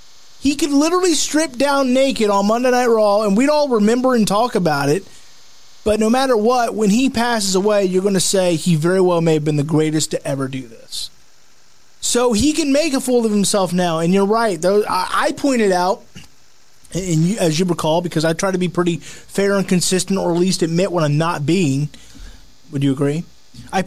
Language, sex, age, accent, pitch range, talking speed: English, male, 30-49, American, 170-220 Hz, 205 wpm